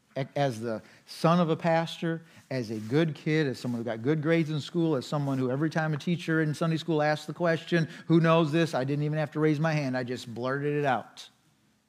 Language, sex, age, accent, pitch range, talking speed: English, male, 40-59, American, 150-205 Hz, 235 wpm